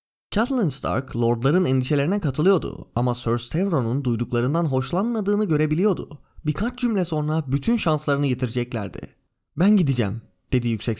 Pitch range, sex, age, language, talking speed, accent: 120-195 Hz, male, 20-39, Turkish, 115 wpm, native